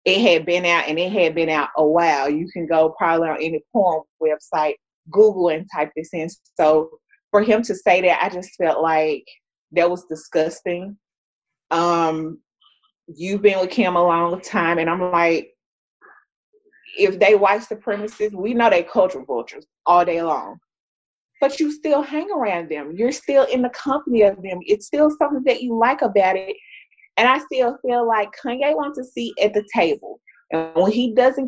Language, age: English, 20-39